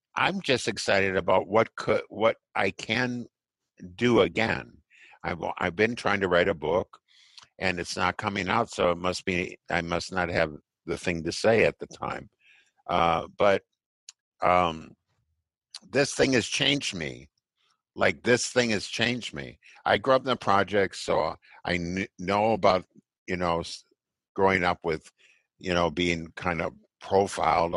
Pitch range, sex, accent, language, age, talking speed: 90-120 Hz, male, American, English, 60-79, 160 wpm